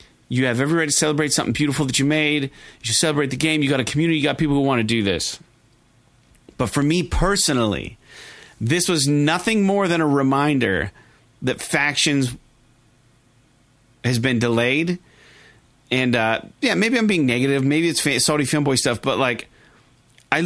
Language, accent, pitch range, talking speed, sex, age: English, American, 120-160 Hz, 175 wpm, male, 40-59